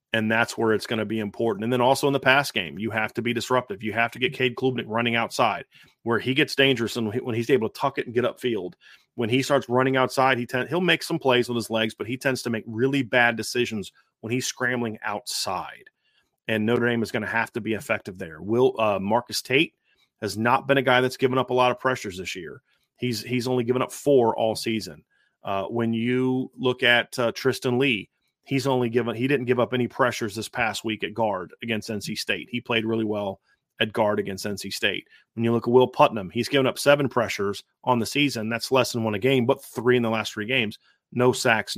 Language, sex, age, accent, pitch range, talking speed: English, male, 30-49, American, 110-130 Hz, 245 wpm